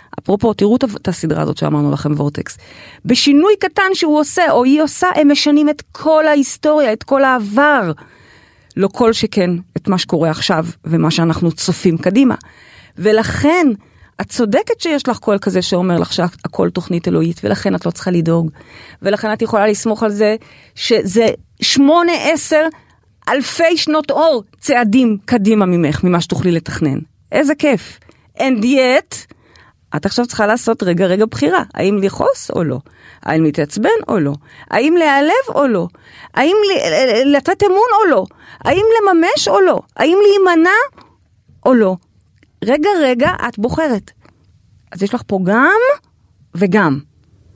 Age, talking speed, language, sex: 30-49, 145 wpm, Hebrew, female